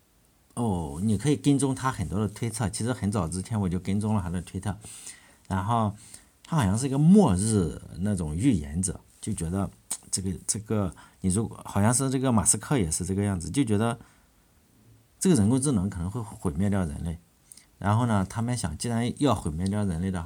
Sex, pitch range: male, 90-115 Hz